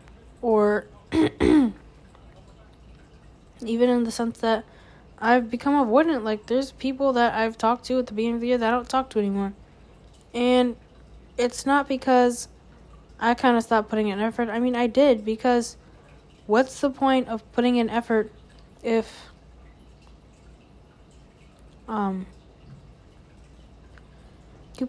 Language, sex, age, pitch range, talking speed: English, female, 10-29, 210-245 Hz, 130 wpm